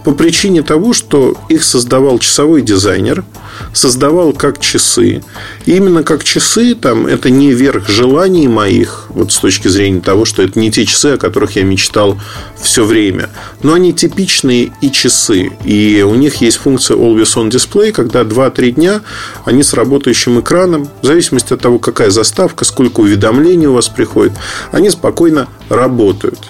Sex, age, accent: male, 40-59, native